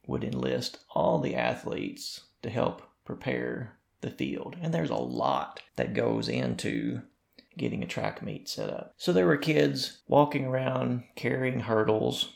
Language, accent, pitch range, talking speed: English, American, 105-130 Hz, 150 wpm